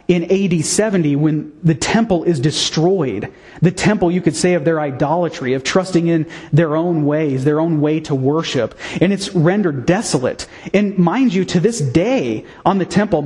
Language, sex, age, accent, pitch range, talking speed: English, male, 30-49, American, 155-190 Hz, 180 wpm